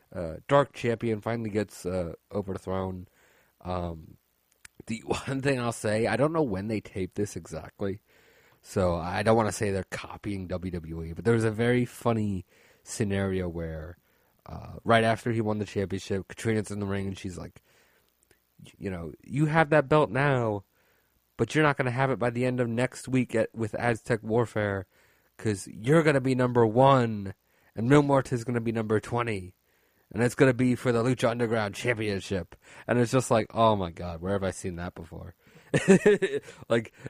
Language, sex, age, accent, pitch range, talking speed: English, male, 30-49, American, 95-120 Hz, 185 wpm